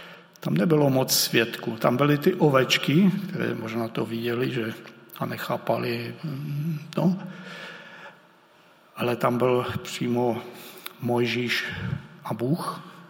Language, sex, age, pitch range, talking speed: Czech, male, 60-79, 130-175 Hz, 105 wpm